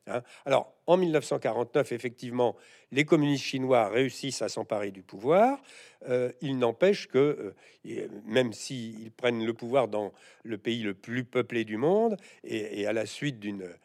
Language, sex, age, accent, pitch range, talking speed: French, male, 60-79, French, 115-145 Hz, 155 wpm